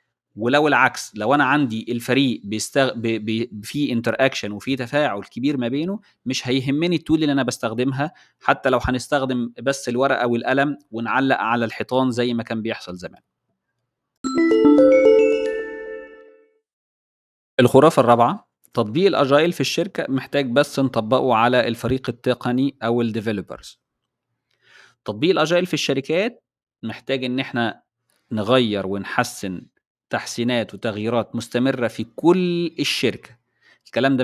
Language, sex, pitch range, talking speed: Arabic, male, 115-145 Hz, 115 wpm